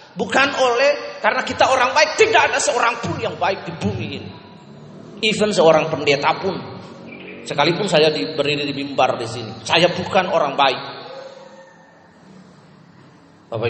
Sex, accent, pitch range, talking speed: male, native, 120-185 Hz, 130 wpm